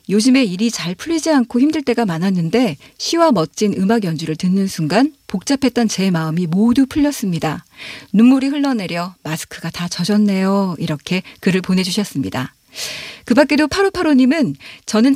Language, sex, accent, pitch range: Korean, female, native, 180-260 Hz